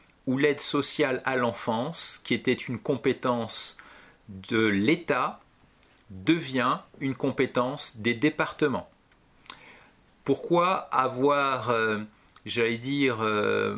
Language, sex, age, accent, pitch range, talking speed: French, male, 40-59, French, 120-145 Hz, 95 wpm